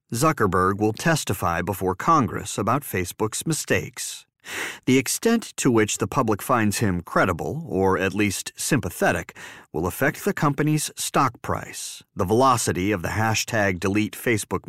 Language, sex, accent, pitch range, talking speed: English, male, American, 95-140 Hz, 130 wpm